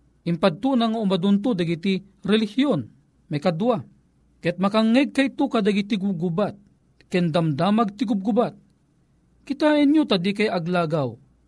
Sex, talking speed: male, 120 wpm